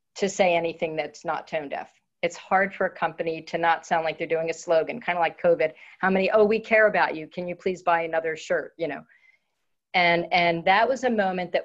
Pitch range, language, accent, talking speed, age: 170-195 Hz, English, American, 235 wpm, 50-69